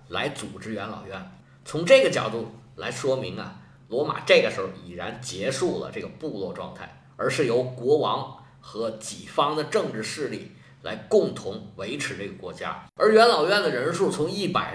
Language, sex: Chinese, male